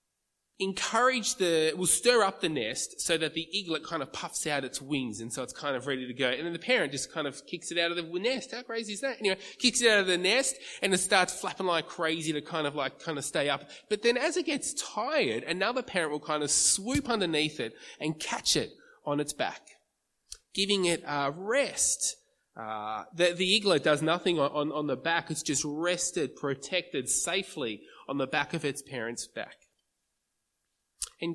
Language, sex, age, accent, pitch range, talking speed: English, male, 20-39, Australian, 135-180 Hz, 215 wpm